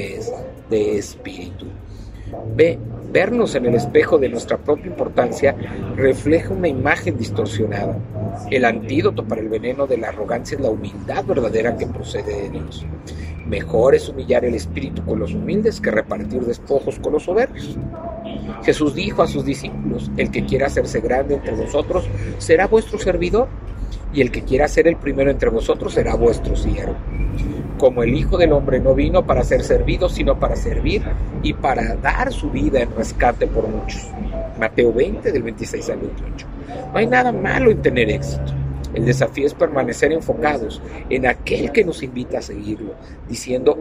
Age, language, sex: 50-69, Spanish, male